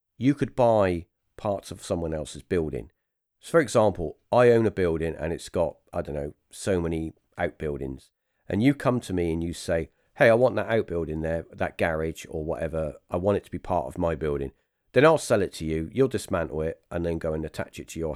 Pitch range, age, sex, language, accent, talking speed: 80-115 Hz, 40-59, male, English, British, 225 wpm